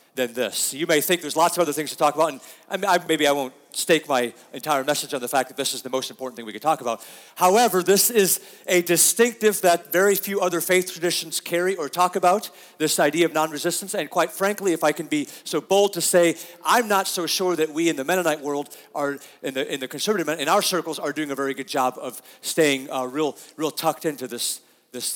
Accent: American